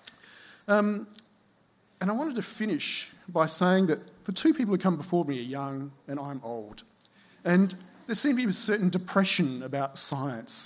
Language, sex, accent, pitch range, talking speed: English, male, Australian, 135-185 Hz, 175 wpm